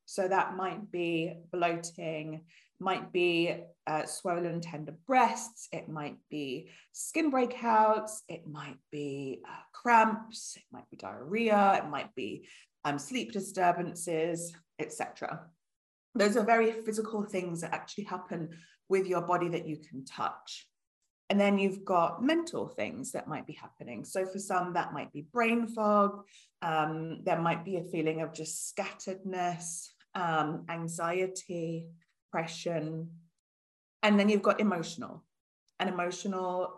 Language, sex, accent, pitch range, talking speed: English, female, British, 165-220 Hz, 140 wpm